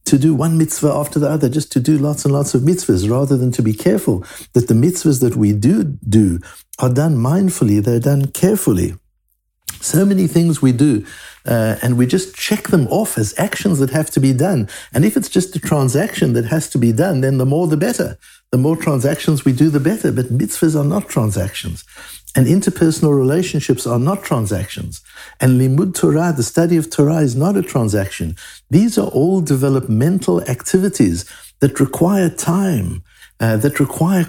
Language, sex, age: English, male, 60-79